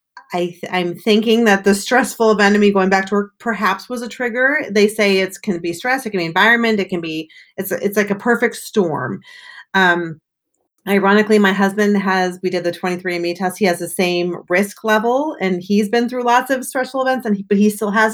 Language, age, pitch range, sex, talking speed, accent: English, 30-49, 180-230 Hz, female, 225 wpm, American